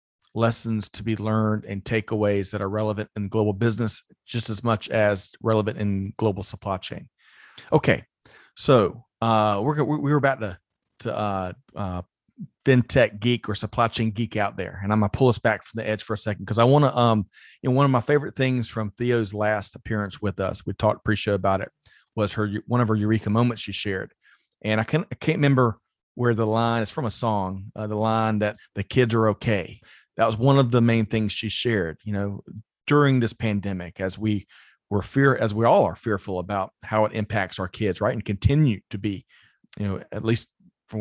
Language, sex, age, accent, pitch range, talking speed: English, male, 40-59, American, 105-120 Hz, 210 wpm